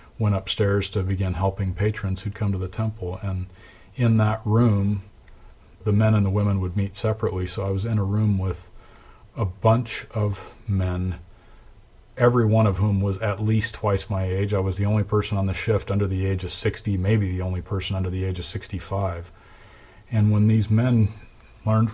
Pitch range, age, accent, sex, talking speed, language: 95-115 Hz, 40-59, American, male, 195 wpm, English